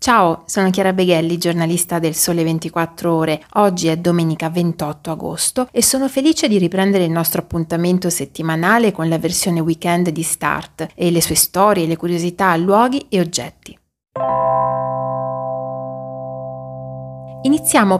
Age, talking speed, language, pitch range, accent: 30-49, 130 wpm, Italian, 165-195 Hz, native